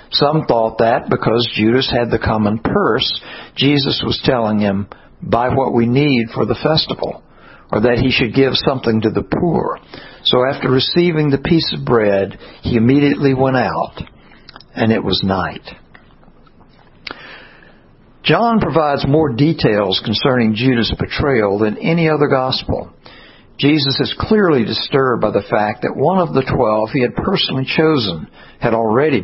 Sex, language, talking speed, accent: male, English, 150 wpm, American